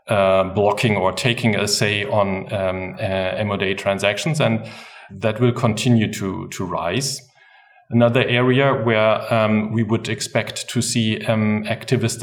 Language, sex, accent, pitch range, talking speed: English, male, German, 105-125 Hz, 140 wpm